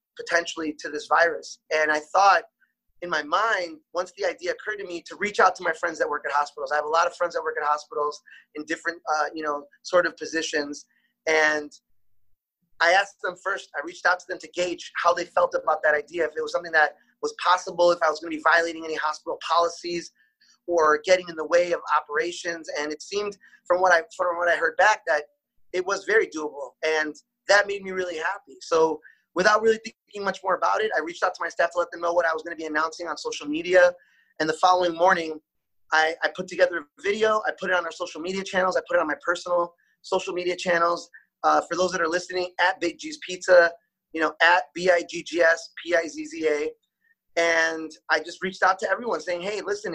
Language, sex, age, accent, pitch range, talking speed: English, male, 20-39, American, 160-185 Hz, 225 wpm